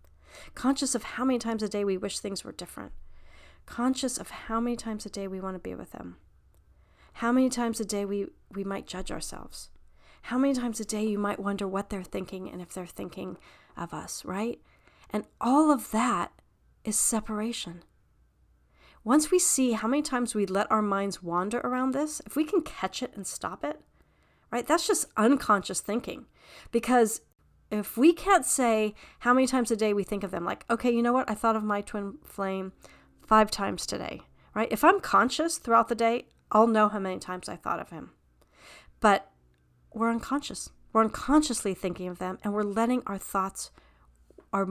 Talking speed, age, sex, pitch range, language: 190 wpm, 40-59, female, 185-235 Hz, English